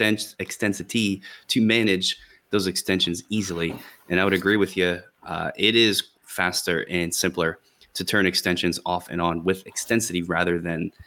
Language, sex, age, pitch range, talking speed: English, male, 20-39, 90-100 Hz, 155 wpm